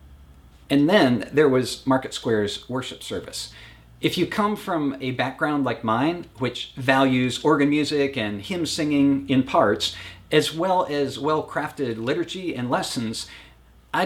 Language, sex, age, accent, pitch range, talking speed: English, male, 40-59, American, 110-165 Hz, 140 wpm